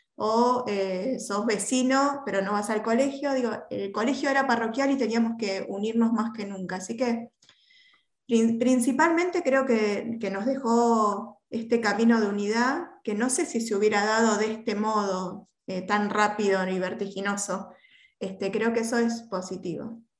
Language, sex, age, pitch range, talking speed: Spanish, female, 20-39, 205-250 Hz, 160 wpm